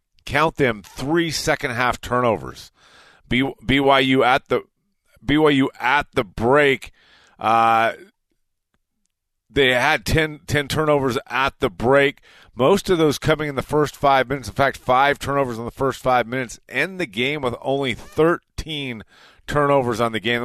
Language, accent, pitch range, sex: English, American, 120-170 Hz, male